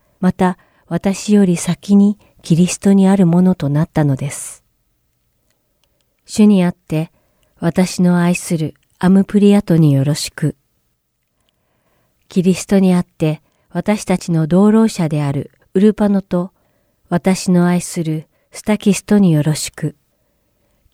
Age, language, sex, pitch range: 40-59, Japanese, female, 155-195 Hz